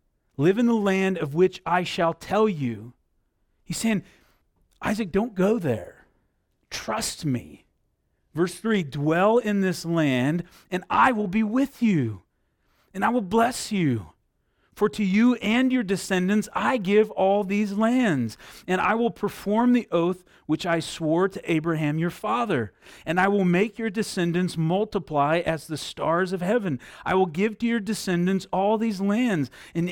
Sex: male